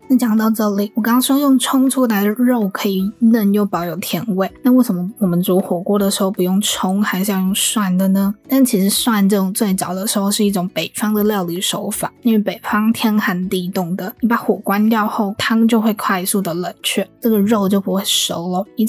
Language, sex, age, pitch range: Chinese, female, 20-39, 190-225 Hz